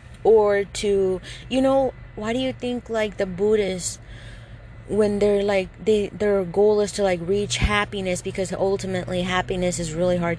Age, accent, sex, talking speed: 20-39, American, female, 160 wpm